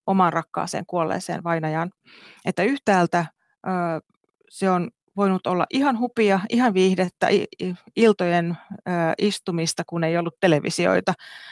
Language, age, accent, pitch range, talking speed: Finnish, 30-49, native, 165-195 Hz, 105 wpm